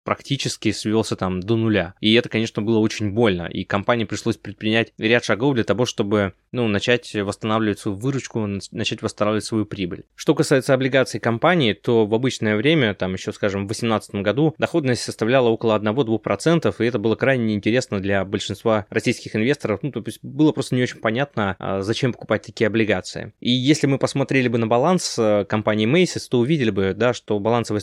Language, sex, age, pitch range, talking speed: Russian, male, 20-39, 105-125 Hz, 180 wpm